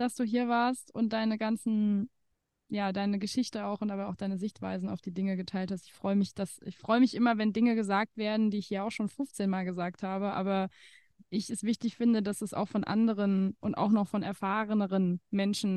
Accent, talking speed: German, 220 wpm